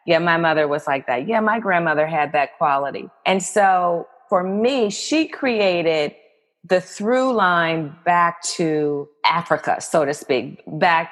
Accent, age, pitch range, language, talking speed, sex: American, 30-49, 150-185 Hz, English, 150 wpm, female